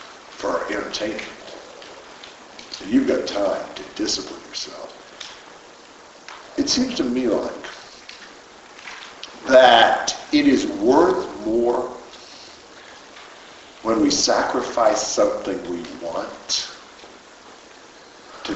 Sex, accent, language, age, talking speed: male, American, English, 50-69, 85 wpm